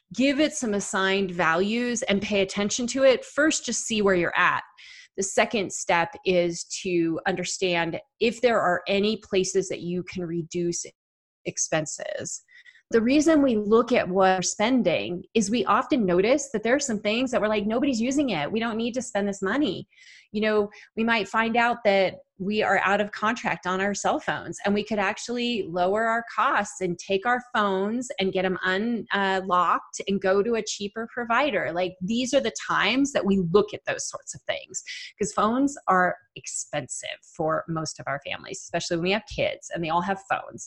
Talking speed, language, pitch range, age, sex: 195 wpm, English, 185-240 Hz, 30-49, female